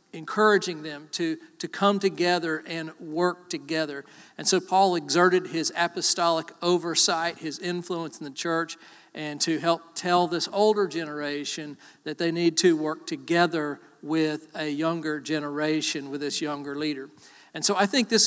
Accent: American